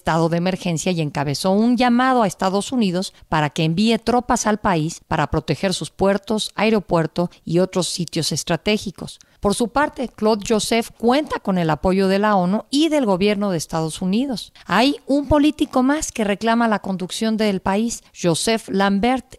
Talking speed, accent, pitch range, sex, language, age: 170 wpm, Mexican, 170-220 Hz, female, Spanish, 50-69